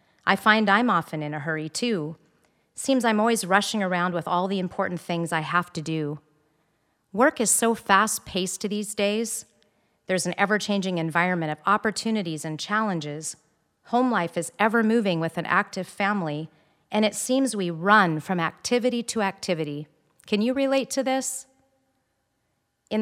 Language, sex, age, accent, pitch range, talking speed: English, female, 40-59, American, 160-215 Hz, 155 wpm